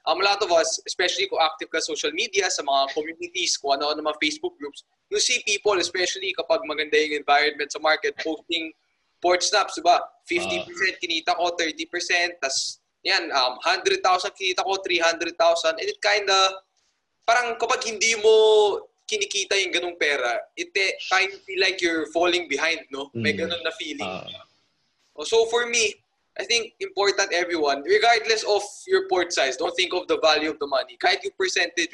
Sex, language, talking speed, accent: male, English, 175 wpm, Filipino